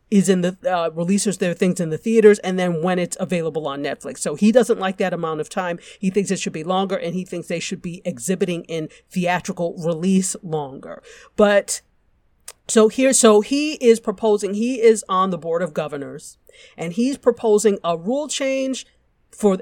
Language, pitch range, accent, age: English, 175-230 Hz, American, 40-59